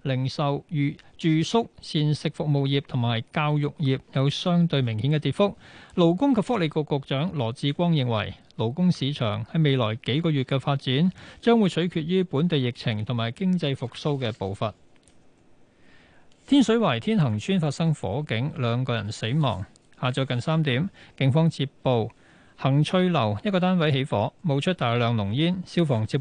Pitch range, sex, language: 120-160 Hz, male, Chinese